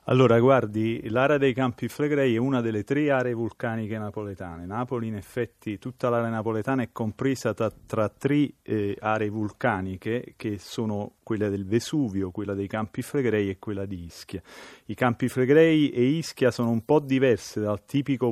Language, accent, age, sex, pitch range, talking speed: Italian, native, 40-59, male, 105-125 Hz, 165 wpm